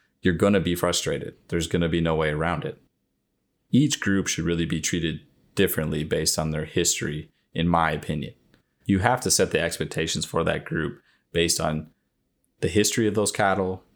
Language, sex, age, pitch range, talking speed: English, male, 30-49, 80-95 Hz, 175 wpm